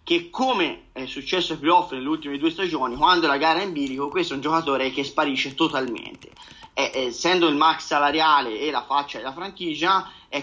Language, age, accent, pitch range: Italian, 30-49, native, 150-210 Hz